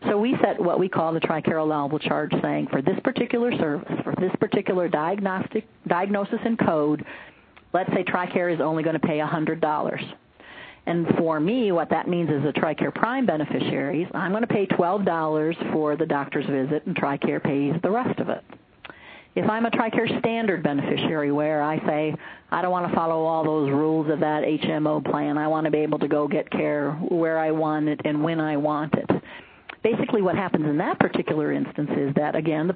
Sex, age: female, 40-59